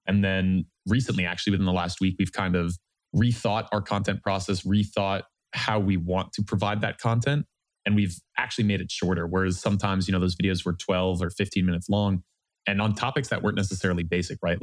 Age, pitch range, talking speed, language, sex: 20-39, 90-105 Hz, 200 wpm, English, male